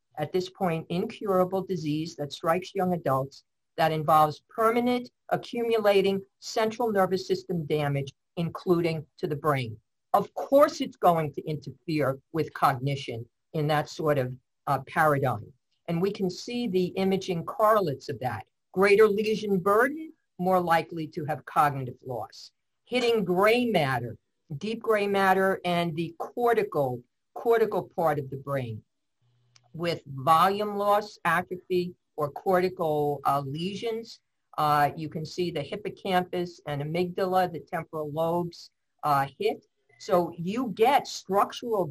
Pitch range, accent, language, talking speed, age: 150-200 Hz, American, English, 130 wpm, 50-69